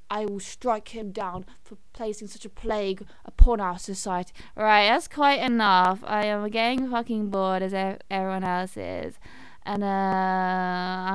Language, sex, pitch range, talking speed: English, female, 180-215 Hz, 150 wpm